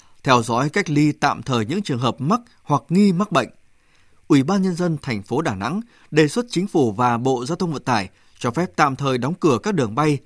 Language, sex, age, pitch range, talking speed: Vietnamese, male, 20-39, 125-175 Hz, 240 wpm